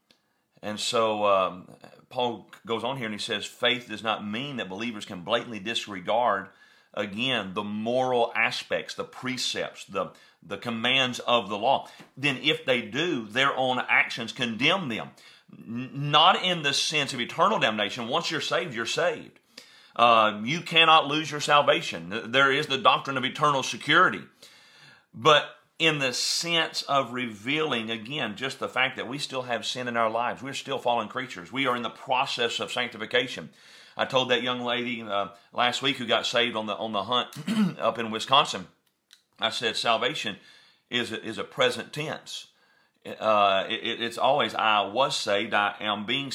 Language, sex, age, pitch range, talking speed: English, male, 40-59, 110-135 Hz, 170 wpm